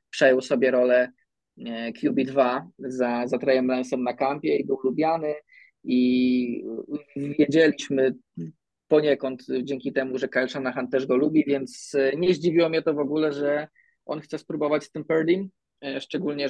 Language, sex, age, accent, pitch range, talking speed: Polish, male, 20-39, native, 125-155 Hz, 140 wpm